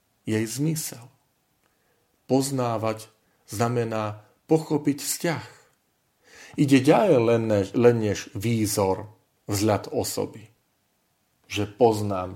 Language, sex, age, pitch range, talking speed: Slovak, male, 40-59, 105-135 Hz, 75 wpm